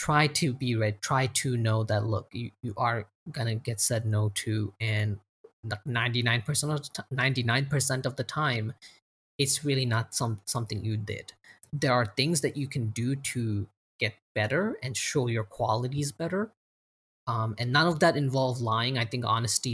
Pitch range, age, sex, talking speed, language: 110-135 Hz, 20-39, male, 165 wpm, English